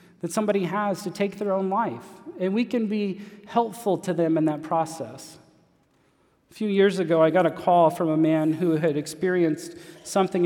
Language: English